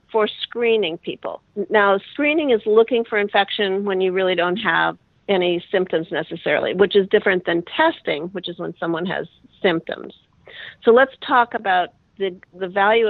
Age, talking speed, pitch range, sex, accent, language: 50-69, 160 wpm, 185-225 Hz, female, American, English